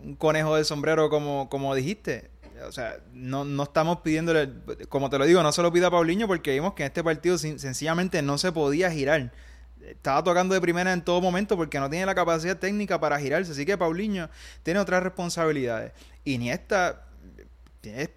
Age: 20-39